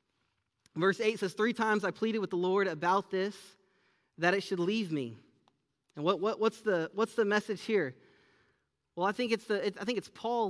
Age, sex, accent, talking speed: 30-49, male, American, 205 wpm